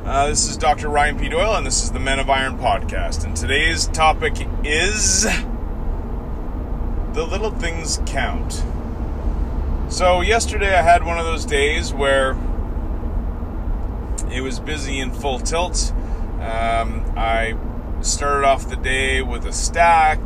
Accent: American